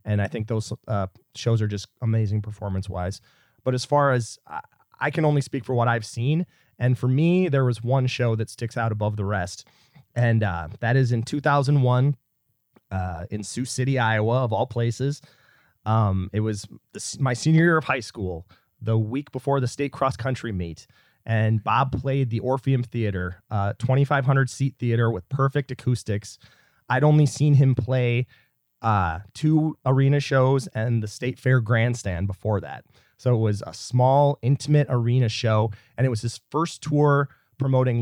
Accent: American